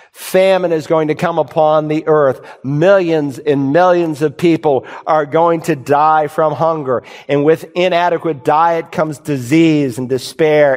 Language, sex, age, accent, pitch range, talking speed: English, male, 50-69, American, 145-180 Hz, 150 wpm